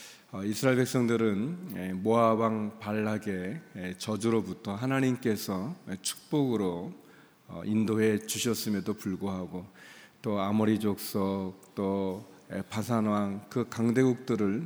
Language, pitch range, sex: Korean, 100-115 Hz, male